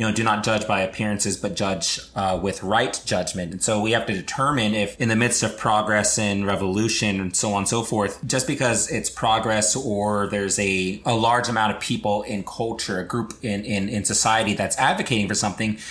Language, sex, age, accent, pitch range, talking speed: English, male, 30-49, American, 105-130 Hz, 215 wpm